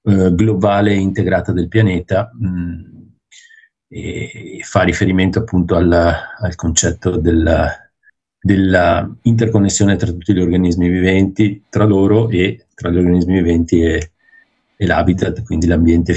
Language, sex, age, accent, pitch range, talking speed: Italian, male, 50-69, native, 85-110 Hz, 120 wpm